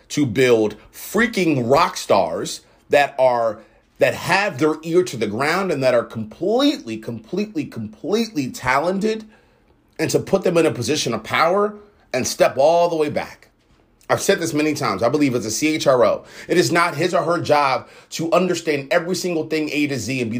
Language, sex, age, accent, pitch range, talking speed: English, male, 30-49, American, 120-165 Hz, 185 wpm